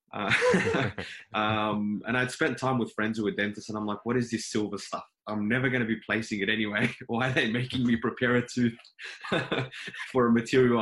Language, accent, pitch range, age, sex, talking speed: English, Australian, 95-115 Hz, 20-39, male, 210 wpm